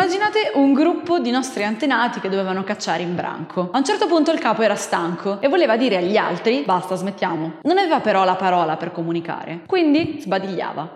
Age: 20-39